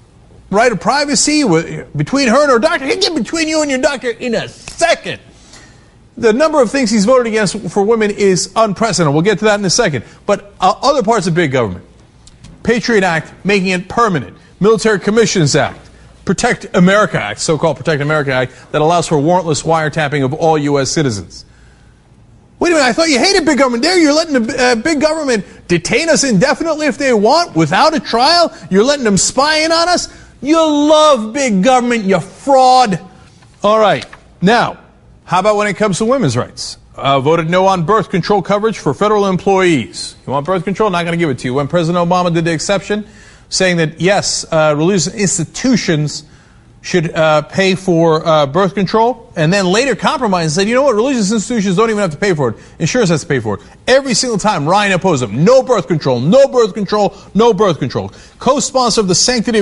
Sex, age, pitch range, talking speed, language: male, 40-59, 165-250 Hz, 200 wpm, English